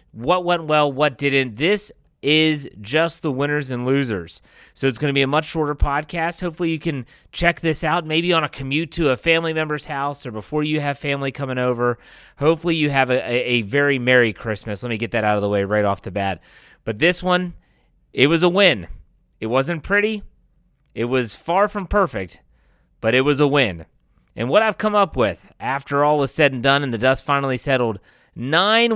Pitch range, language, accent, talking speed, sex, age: 125-160 Hz, English, American, 210 wpm, male, 30-49